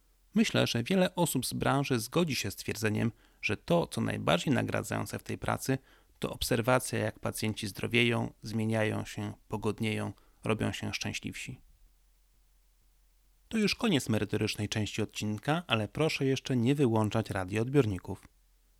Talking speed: 135 wpm